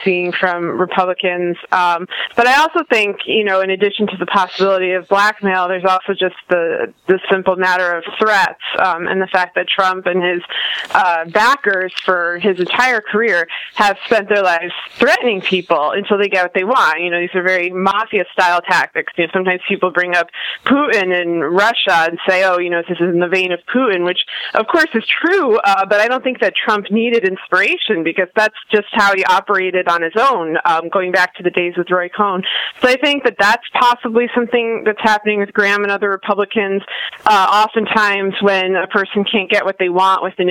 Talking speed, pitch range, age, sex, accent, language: 205 wpm, 180-210 Hz, 20-39, female, American, English